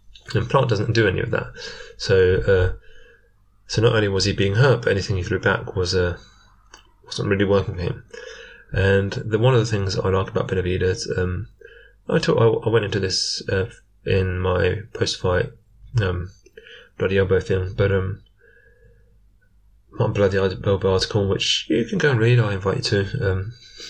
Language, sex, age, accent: English, male, 20-39, British